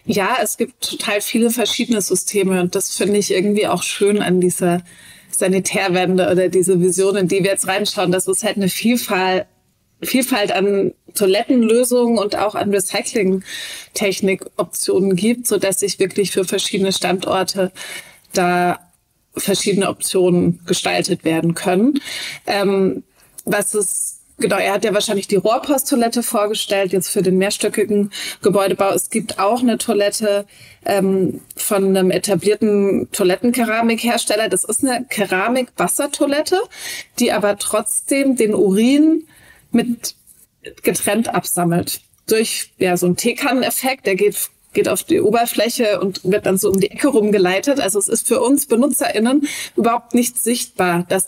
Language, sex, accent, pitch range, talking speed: German, female, German, 190-235 Hz, 140 wpm